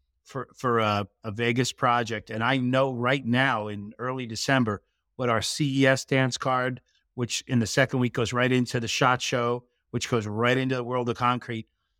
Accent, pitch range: American, 115-140 Hz